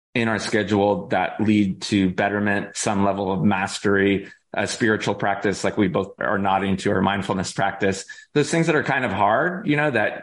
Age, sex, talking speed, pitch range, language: 20-39, male, 195 wpm, 100-110 Hz, English